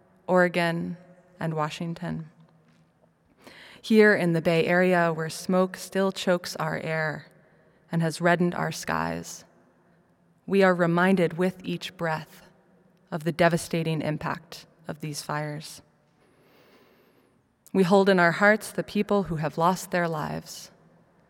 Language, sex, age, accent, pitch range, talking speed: English, female, 20-39, American, 165-185 Hz, 125 wpm